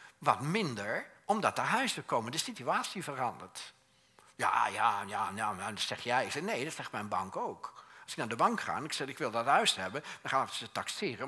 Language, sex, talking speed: Dutch, male, 220 wpm